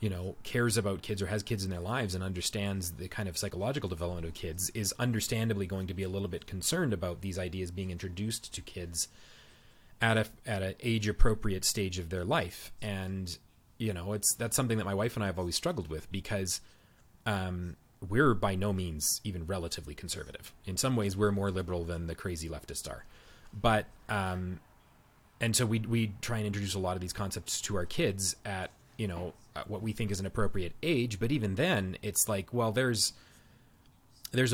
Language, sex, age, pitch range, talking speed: English, male, 30-49, 95-115 Hz, 200 wpm